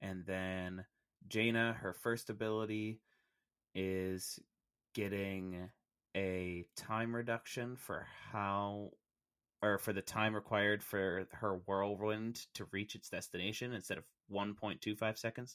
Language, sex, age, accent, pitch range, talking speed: English, male, 20-39, American, 95-125 Hz, 110 wpm